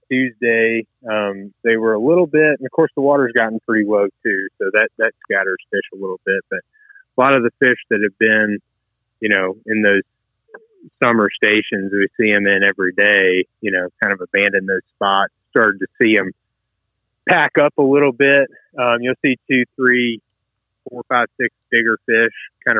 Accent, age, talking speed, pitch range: American, 30-49, 190 wpm, 105-125 Hz